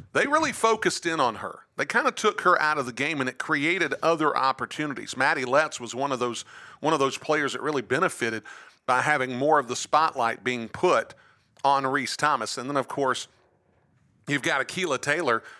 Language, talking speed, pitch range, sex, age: English, 200 wpm, 125-155 Hz, male, 40-59